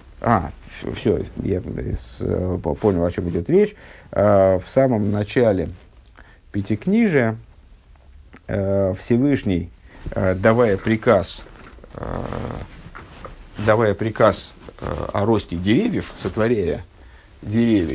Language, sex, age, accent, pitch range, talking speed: Russian, male, 50-69, native, 85-125 Hz, 75 wpm